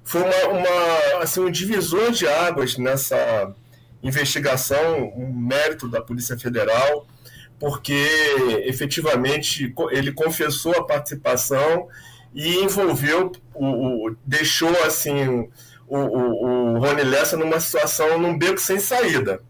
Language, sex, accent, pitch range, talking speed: Portuguese, male, Brazilian, 125-170 Hz, 95 wpm